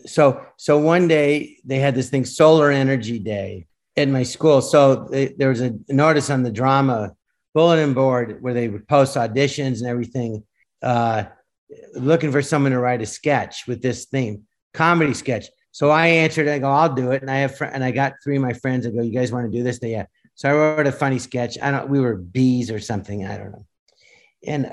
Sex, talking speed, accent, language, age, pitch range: male, 220 wpm, American, English, 50-69, 120-145 Hz